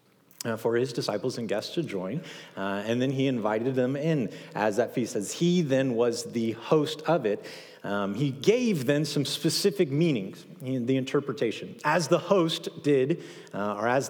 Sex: male